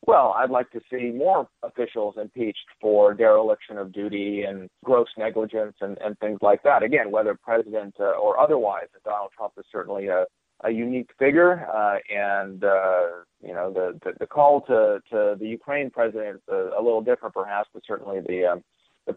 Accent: American